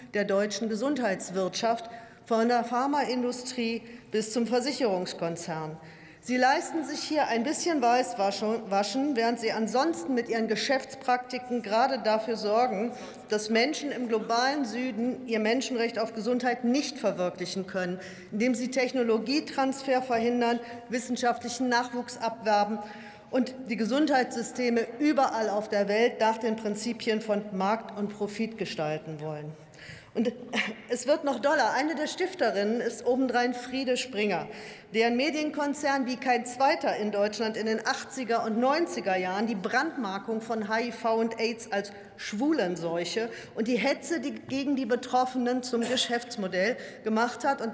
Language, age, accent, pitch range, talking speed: German, 40-59, German, 215-255 Hz, 130 wpm